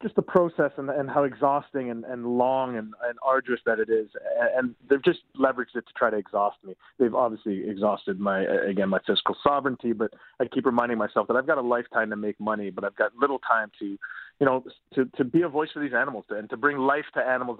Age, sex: 30-49, male